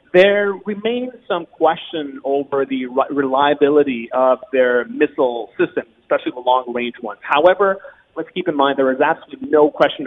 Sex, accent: male, American